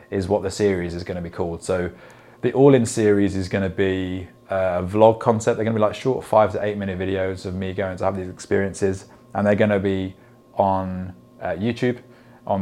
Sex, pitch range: male, 90-110 Hz